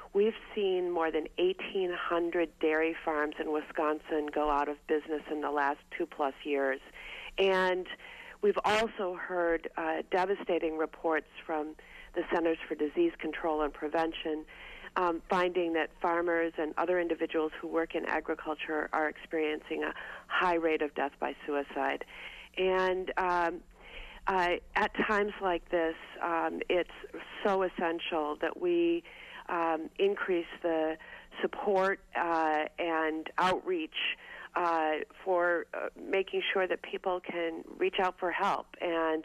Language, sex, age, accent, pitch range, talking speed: English, female, 40-59, American, 160-185 Hz, 130 wpm